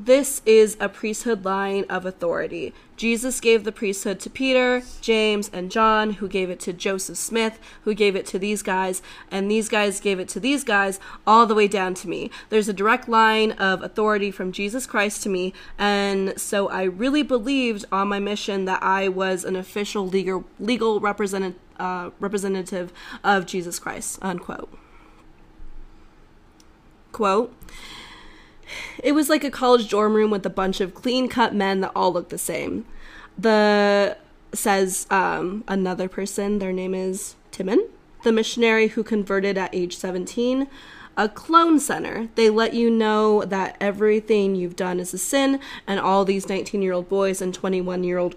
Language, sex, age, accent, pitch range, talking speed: English, female, 20-39, American, 185-220 Hz, 160 wpm